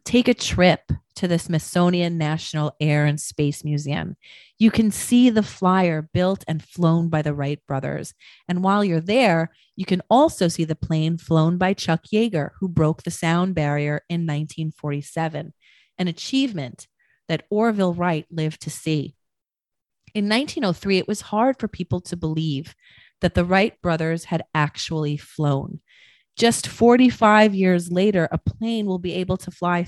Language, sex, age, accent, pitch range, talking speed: English, female, 30-49, American, 155-195 Hz, 160 wpm